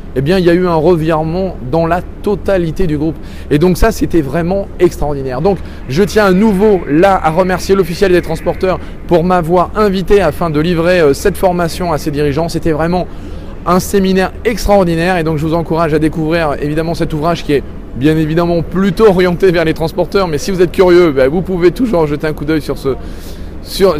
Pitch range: 155-195 Hz